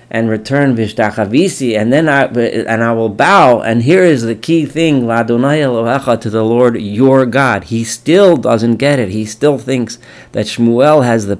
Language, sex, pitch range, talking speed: English, male, 105-125 Hz, 180 wpm